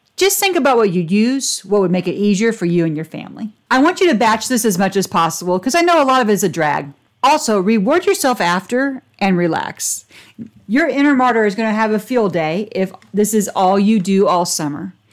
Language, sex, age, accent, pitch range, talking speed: English, female, 40-59, American, 190-245 Hz, 235 wpm